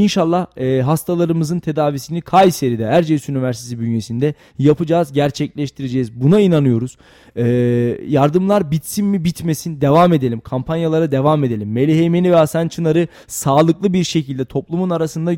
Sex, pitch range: male, 130-170 Hz